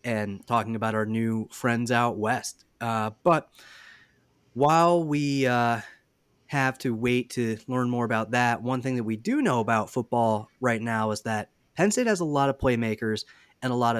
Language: English